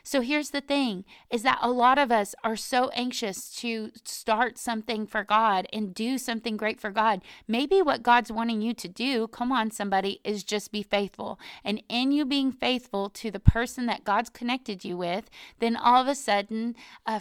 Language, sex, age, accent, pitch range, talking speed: English, female, 30-49, American, 210-255 Hz, 200 wpm